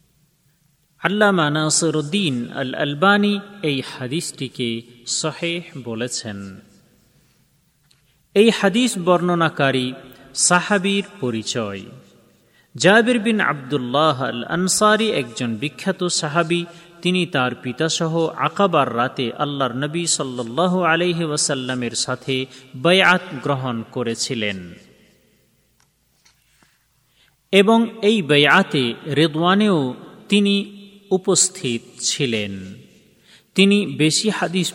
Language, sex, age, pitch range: Bengali, male, 30-49, 130-180 Hz